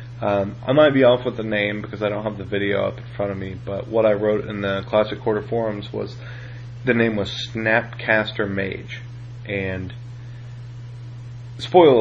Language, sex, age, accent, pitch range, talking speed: English, male, 30-49, American, 110-120 Hz, 180 wpm